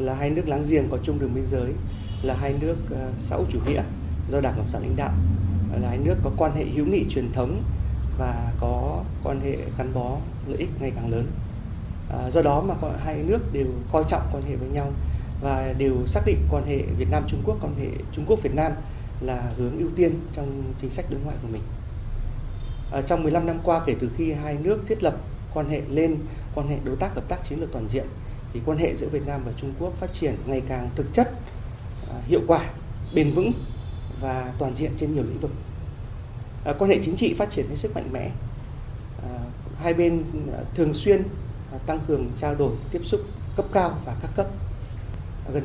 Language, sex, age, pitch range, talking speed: Vietnamese, male, 20-39, 100-145 Hz, 205 wpm